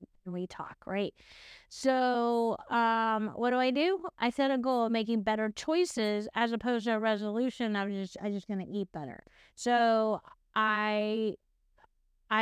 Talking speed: 155 wpm